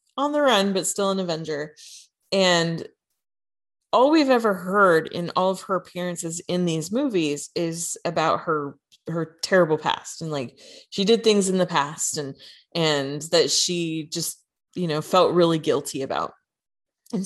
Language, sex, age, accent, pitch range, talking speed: English, female, 20-39, American, 160-215 Hz, 160 wpm